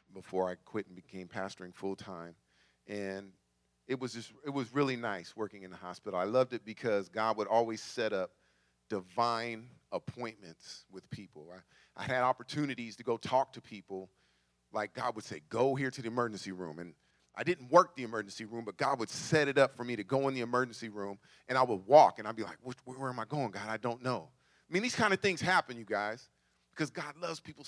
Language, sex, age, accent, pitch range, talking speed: English, male, 40-59, American, 95-130 Hz, 220 wpm